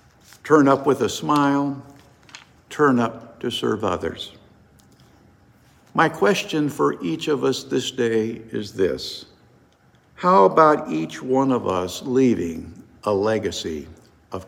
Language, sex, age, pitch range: English, male, 60-79, 120-155 Hz